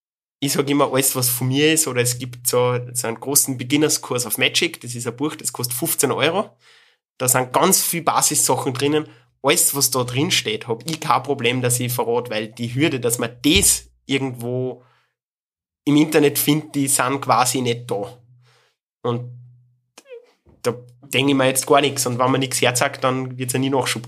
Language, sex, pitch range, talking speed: German, male, 125-140 Hz, 195 wpm